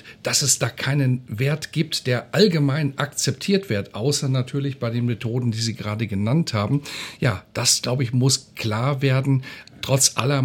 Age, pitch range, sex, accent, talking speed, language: 50-69, 120-145 Hz, male, German, 165 wpm, German